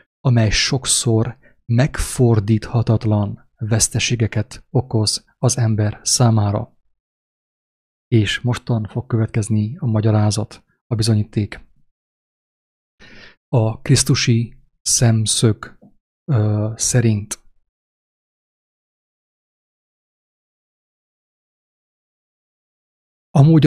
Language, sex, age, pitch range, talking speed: English, male, 30-49, 105-120 Hz, 55 wpm